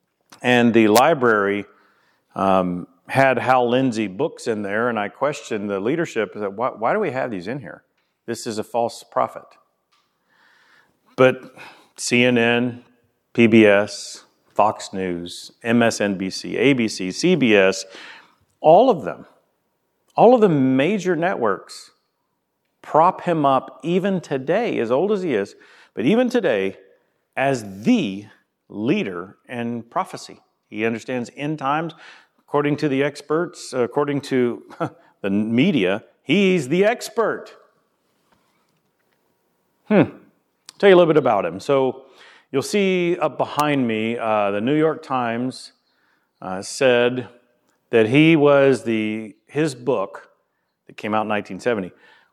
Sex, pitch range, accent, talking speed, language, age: male, 110-155 Hz, American, 125 wpm, English, 40-59